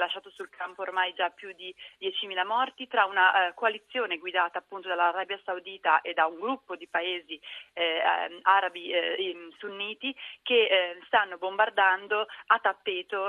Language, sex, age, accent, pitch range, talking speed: Italian, female, 30-49, native, 180-230 Hz, 145 wpm